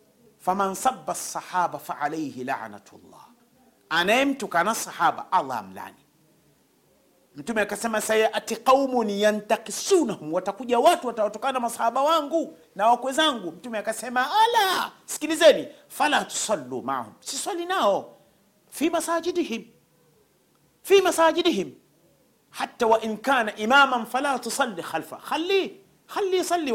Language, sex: Swahili, male